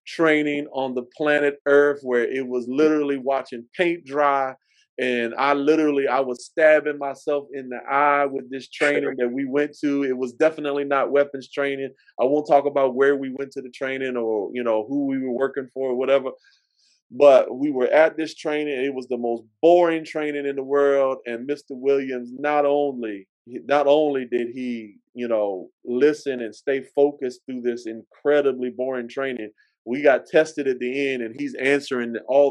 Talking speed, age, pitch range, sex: 185 wpm, 30-49, 125-145 Hz, male